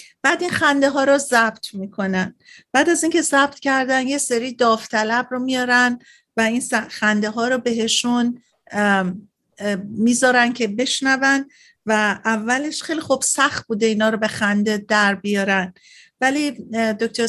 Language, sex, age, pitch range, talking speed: Persian, female, 50-69, 220-265 Hz, 140 wpm